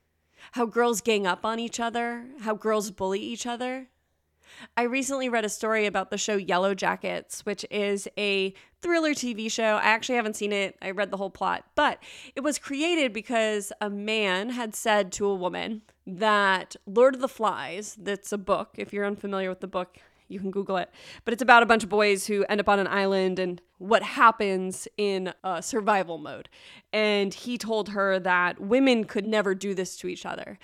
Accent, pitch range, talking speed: American, 195-240 Hz, 200 wpm